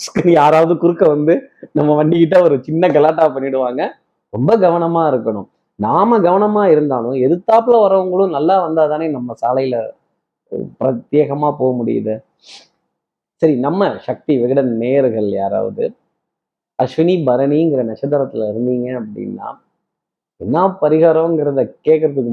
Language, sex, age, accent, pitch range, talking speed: Tamil, male, 20-39, native, 125-170 Hz, 110 wpm